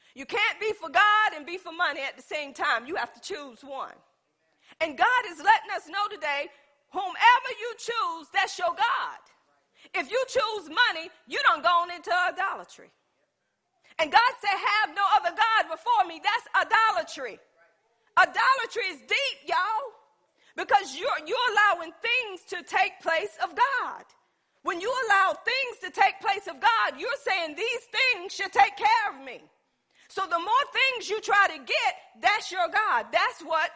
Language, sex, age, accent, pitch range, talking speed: English, female, 40-59, American, 335-430 Hz, 170 wpm